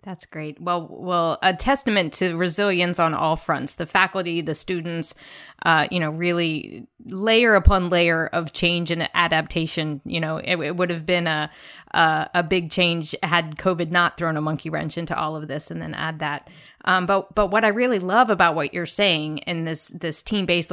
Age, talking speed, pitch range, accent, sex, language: 20-39, 195 wpm, 160-195 Hz, American, female, English